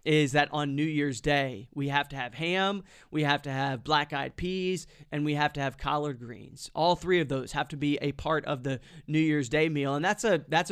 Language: English